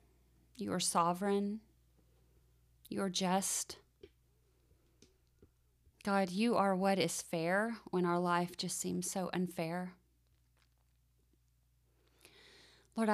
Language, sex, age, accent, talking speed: English, female, 30-49, American, 85 wpm